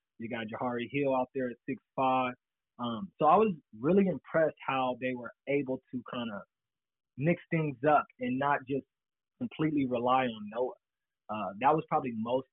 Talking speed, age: 170 wpm, 20-39